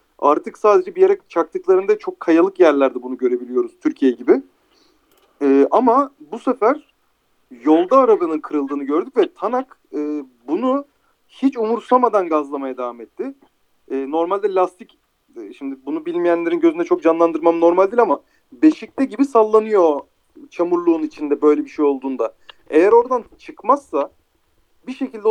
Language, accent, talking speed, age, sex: Turkish, native, 130 wpm, 40-59, male